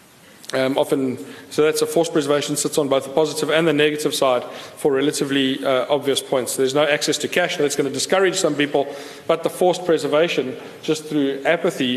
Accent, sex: South African, male